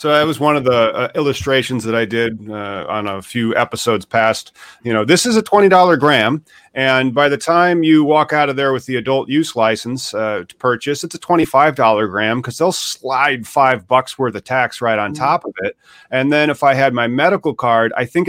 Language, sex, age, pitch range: English, male, 30-49, 115-150 Hz